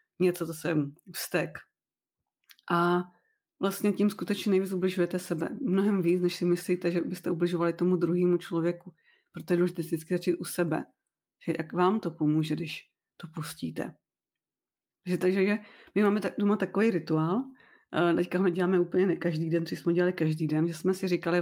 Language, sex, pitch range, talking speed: Czech, female, 165-190 Hz, 170 wpm